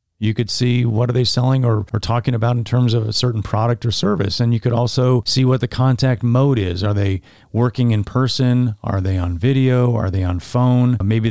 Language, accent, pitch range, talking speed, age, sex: English, American, 105-125 Hz, 230 wpm, 40-59, male